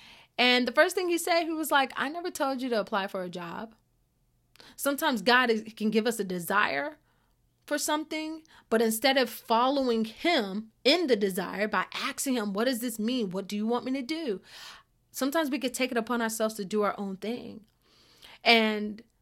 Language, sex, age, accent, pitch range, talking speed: English, female, 30-49, American, 205-250 Hz, 195 wpm